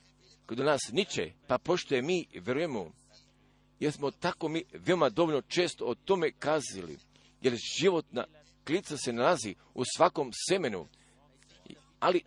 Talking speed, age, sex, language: 125 wpm, 50-69, male, Croatian